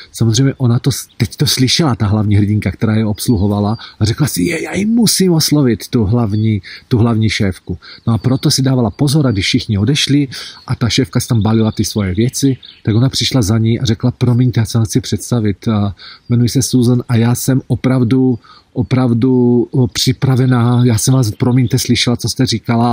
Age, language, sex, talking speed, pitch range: 40-59, Czech, male, 180 wpm, 105-130 Hz